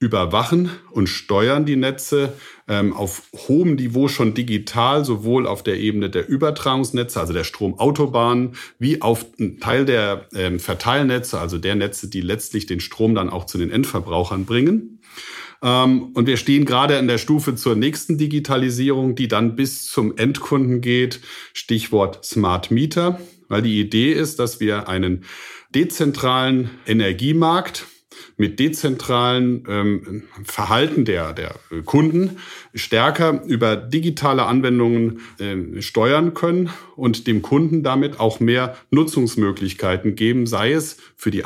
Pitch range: 105-135 Hz